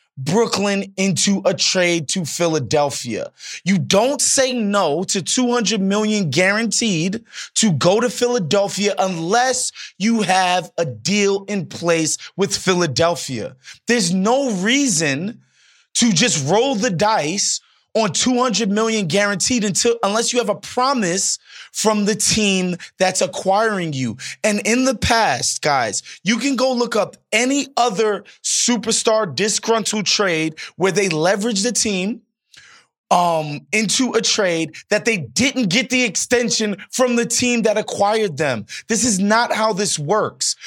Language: English